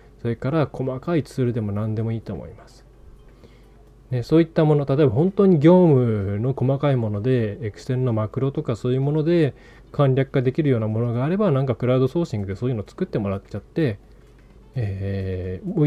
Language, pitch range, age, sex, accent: Japanese, 110-155 Hz, 20-39, male, native